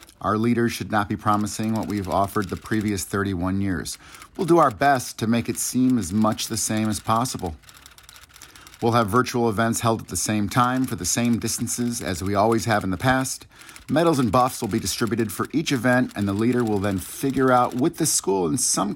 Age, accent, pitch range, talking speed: 50-69, American, 105-125 Hz, 215 wpm